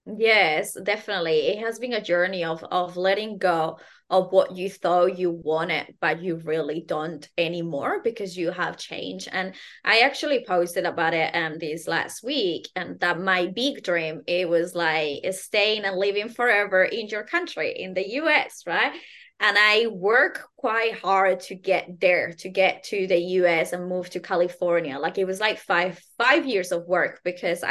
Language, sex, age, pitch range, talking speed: English, female, 20-39, 175-220 Hz, 180 wpm